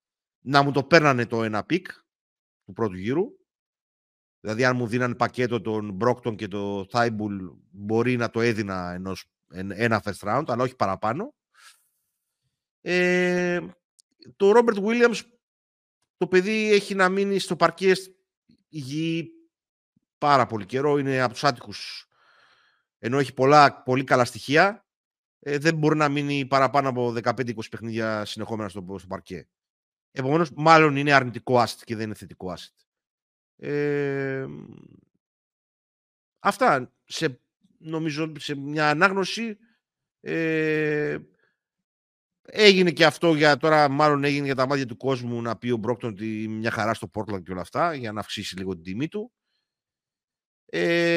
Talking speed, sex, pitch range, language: 140 wpm, male, 115-175 Hz, Greek